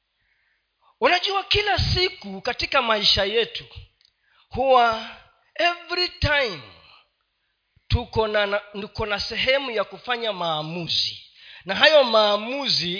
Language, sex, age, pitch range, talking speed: Swahili, male, 40-59, 205-310 Hz, 90 wpm